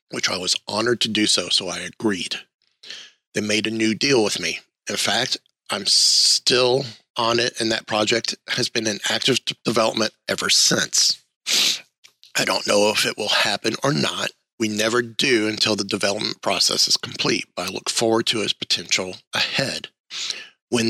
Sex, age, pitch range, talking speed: male, 30-49, 105-115 Hz, 170 wpm